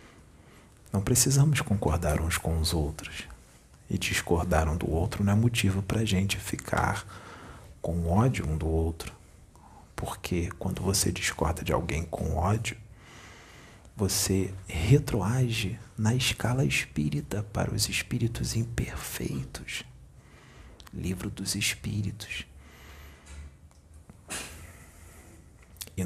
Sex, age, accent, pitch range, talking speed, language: male, 40-59, Brazilian, 80-105 Hz, 105 wpm, Portuguese